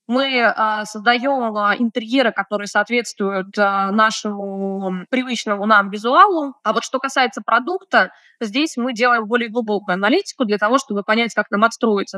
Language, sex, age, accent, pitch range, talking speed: Russian, female, 20-39, native, 200-260 Hz, 135 wpm